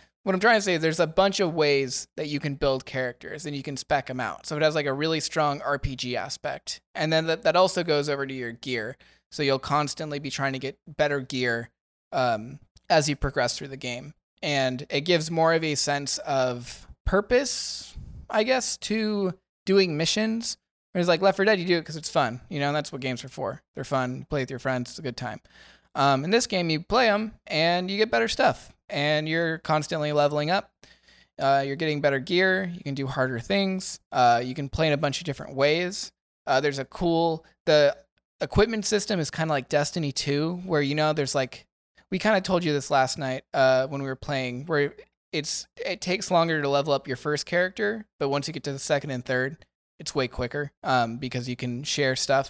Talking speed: 225 wpm